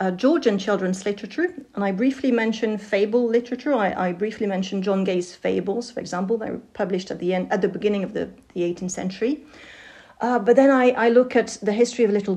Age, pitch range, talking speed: 40-59, 195-240 Hz, 215 wpm